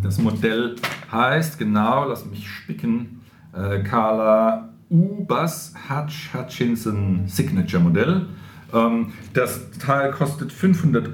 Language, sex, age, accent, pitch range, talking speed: German, male, 50-69, German, 95-140 Hz, 100 wpm